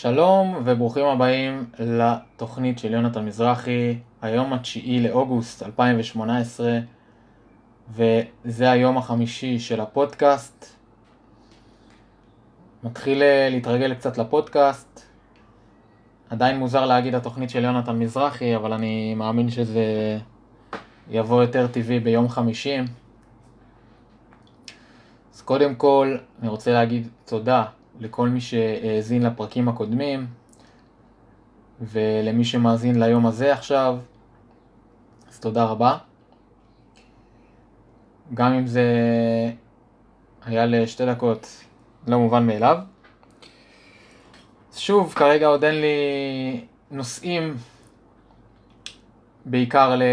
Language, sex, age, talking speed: Hebrew, male, 20-39, 80 wpm